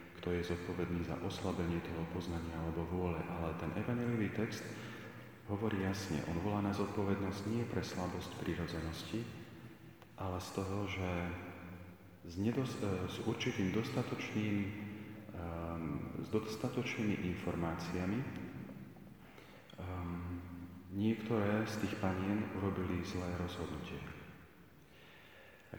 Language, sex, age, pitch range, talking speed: Slovak, male, 40-59, 90-105 Hz, 105 wpm